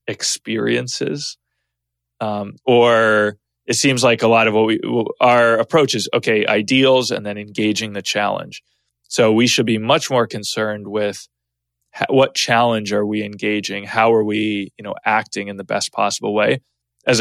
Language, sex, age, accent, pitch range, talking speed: English, male, 20-39, American, 100-115 Hz, 160 wpm